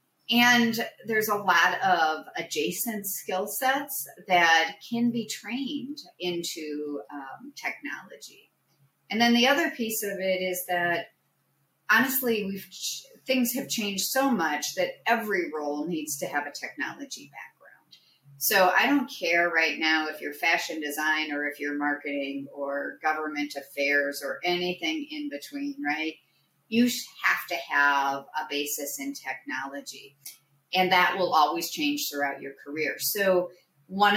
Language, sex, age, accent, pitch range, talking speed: English, female, 40-59, American, 145-205 Hz, 140 wpm